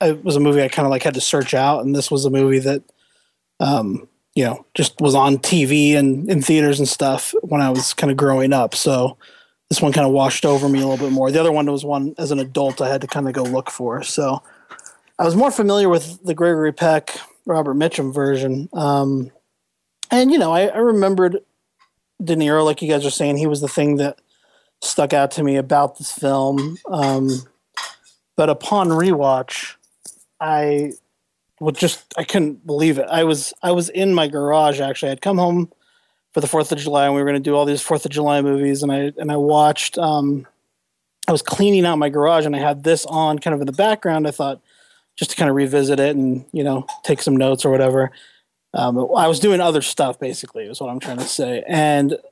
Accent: American